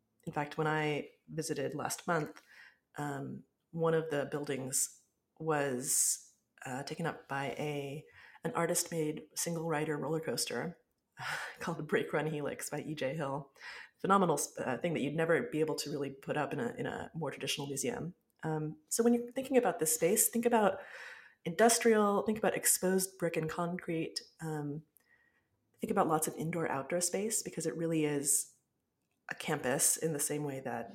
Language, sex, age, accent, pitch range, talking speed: English, female, 30-49, American, 145-180 Hz, 165 wpm